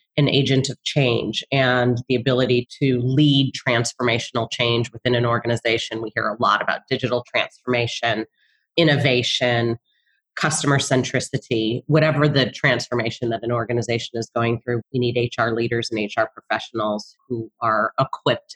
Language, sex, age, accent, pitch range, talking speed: English, female, 30-49, American, 120-140 Hz, 140 wpm